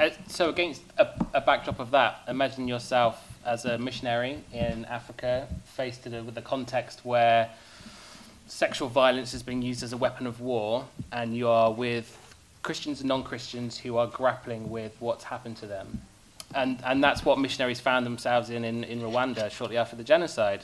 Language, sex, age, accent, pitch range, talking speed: English, male, 20-39, British, 115-135 Hz, 170 wpm